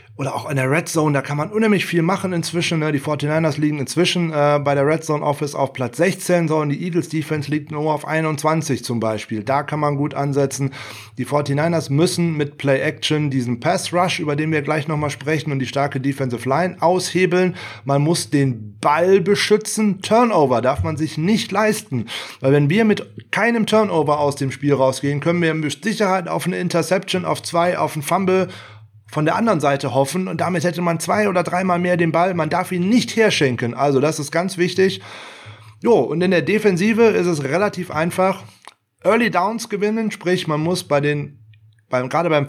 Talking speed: 190 wpm